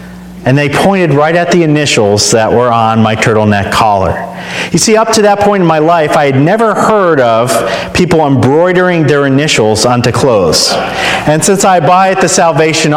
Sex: male